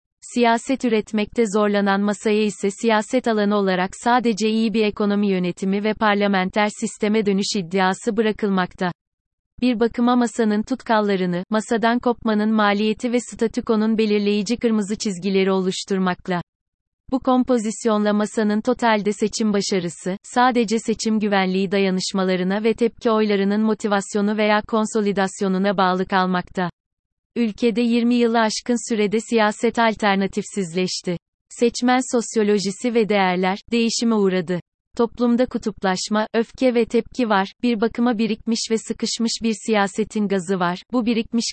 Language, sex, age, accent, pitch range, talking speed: Turkish, female, 30-49, native, 195-230 Hz, 115 wpm